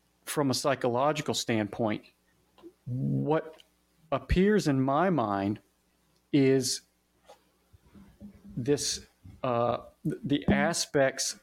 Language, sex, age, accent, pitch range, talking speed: English, male, 40-59, American, 115-140 Hz, 75 wpm